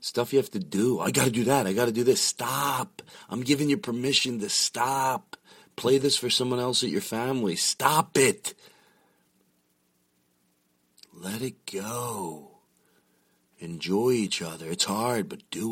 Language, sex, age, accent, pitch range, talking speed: English, male, 40-59, American, 75-120 Hz, 160 wpm